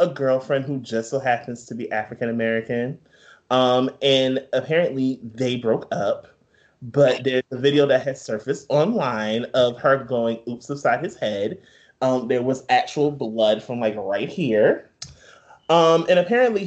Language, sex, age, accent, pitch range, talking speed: English, male, 20-39, American, 120-180 Hz, 155 wpm